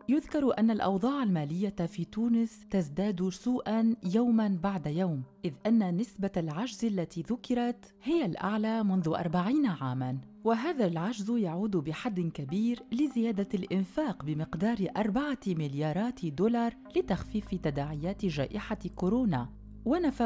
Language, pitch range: Arabic, 175-235 Hz